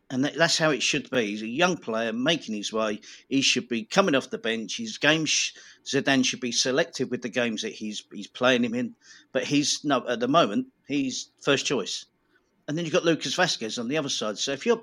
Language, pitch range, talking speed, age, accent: English, 115-150 Hz, 235 wpm, 50-69, British